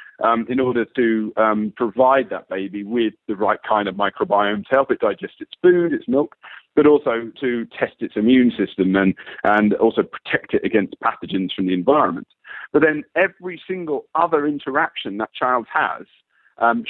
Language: English